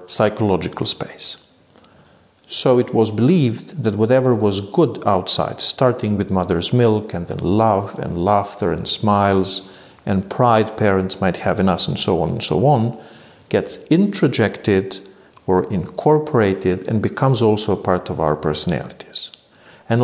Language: English